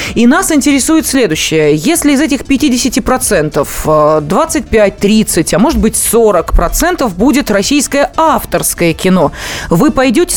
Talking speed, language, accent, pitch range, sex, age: 110 wpm, Russian, native, 195-270 Hz, female, 20-39